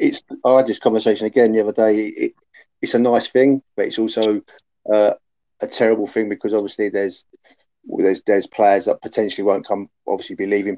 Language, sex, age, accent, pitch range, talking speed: English, male, 30-49, British, 95-110 Hz, 180 wpm